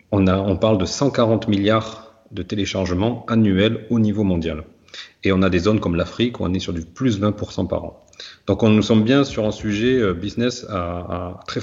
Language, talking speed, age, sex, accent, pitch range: French, 215 wpm, 40-59, male, French, 95-120 Hz